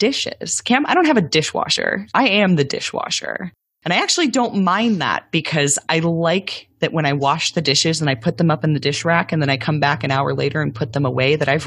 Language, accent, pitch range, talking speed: English, American, 135-185 Hz, 250 wpm